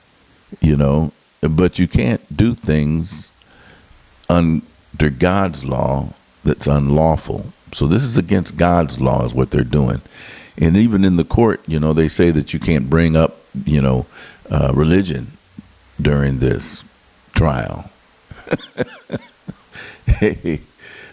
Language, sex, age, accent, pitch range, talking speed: English, male, 50-69, American, 70-90 Hz, 125 wpm